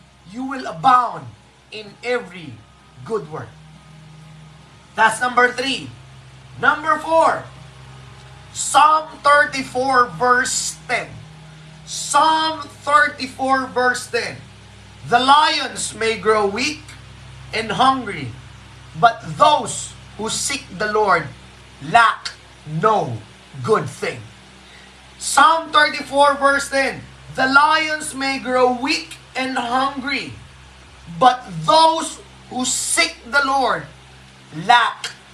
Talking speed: 95 wpm